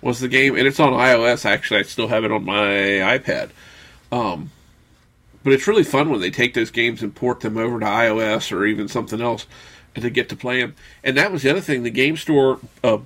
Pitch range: 115-145 Hz